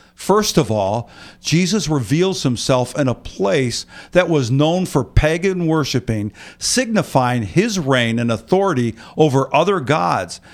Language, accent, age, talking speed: English, American, 50-69, 130 wpm